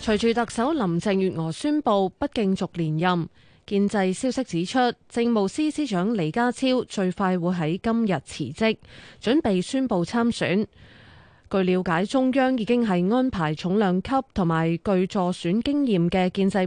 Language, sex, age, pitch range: Chinese, female, 20-39, 175-245 Hz